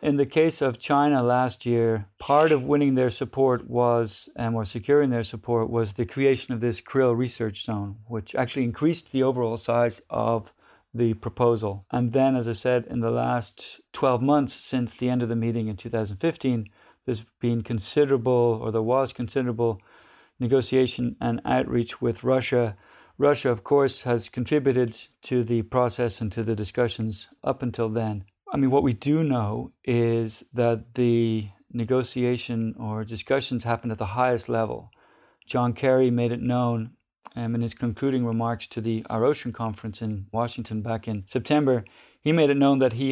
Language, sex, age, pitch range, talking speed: English, male, 50-69, 115-130 Hz, 170 wpm